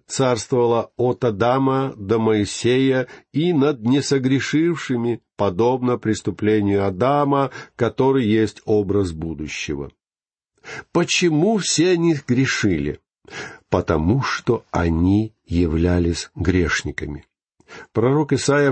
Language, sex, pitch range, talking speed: Russian, male, 95-140 Hz, 85 wpm